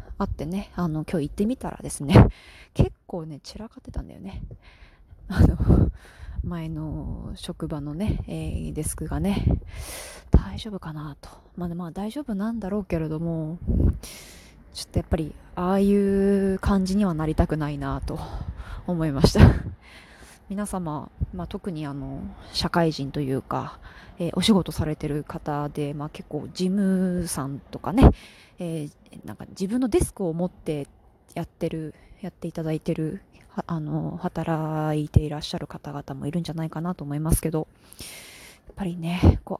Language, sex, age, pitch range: Japanese, female, 20-39, 150-190 Hz